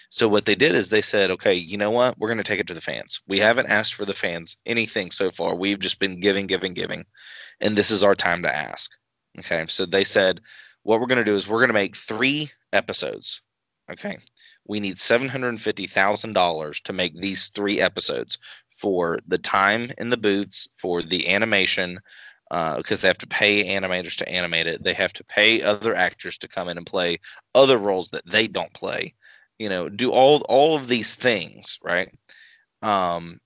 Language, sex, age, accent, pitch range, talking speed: English, male, 20-39, American, 95-120 Hz, 200 wpm